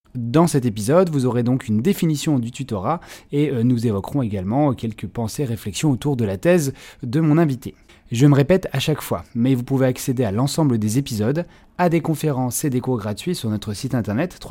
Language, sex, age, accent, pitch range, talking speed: French, male, 30-49, French, 110-145 Hz, 205 wpm